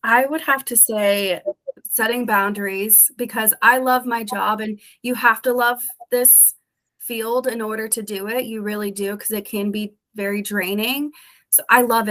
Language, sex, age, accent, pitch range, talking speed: English, female, 20-39, American, 210-240 Hz, 180 wpm